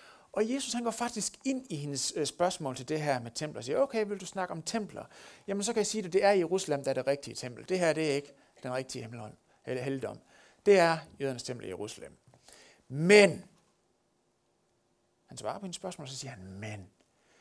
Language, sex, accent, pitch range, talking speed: Danish, male, native, 130-190 Hz, 220 wpm